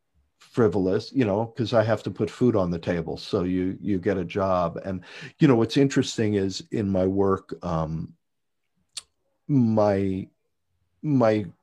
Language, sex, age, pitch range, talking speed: English, male, 50-69, 85-105 Hz, 155 wpm